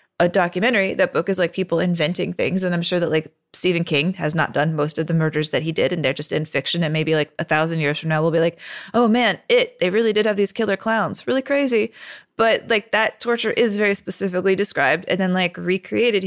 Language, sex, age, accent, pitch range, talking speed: English, female, 20-39, American, 175-215 Hz, 245 wpm